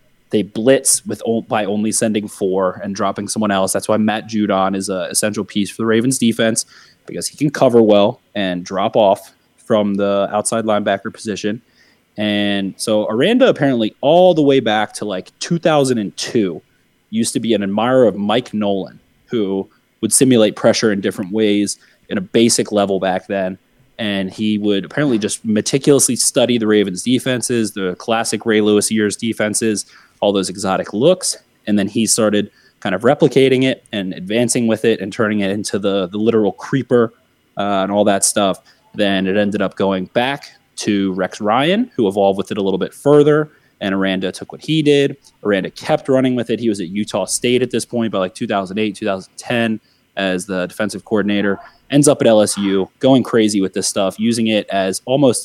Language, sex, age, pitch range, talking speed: English, male, 20-39, 100-120 Hz, 185 wpm